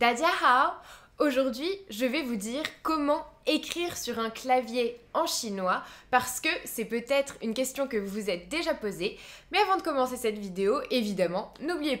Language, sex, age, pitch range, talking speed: French, female, 20-39, 205-275 Hz, 160 wpm